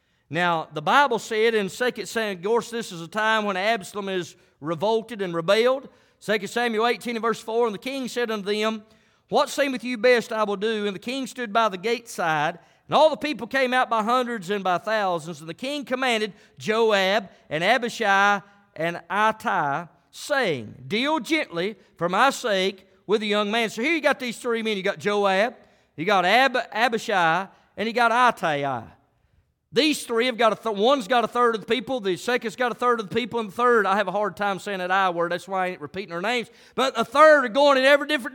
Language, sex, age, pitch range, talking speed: English, male, 50-69, 195-265 Hz, 225 wpm